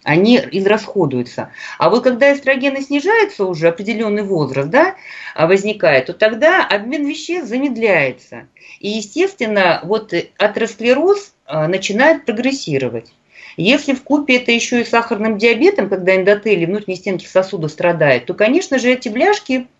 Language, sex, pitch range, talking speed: Russian, female, 170-245 Hz, 130 wpm